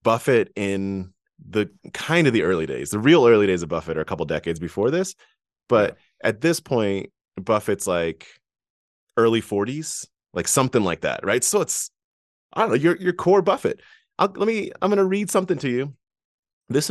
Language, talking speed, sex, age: English, 190 wpm, male, 30-49